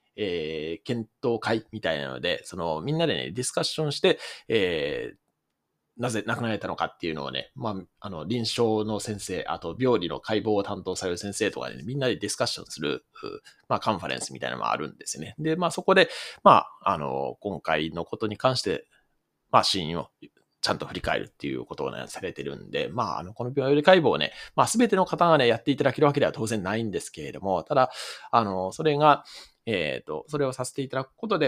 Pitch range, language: 105-145 Hz, Japanese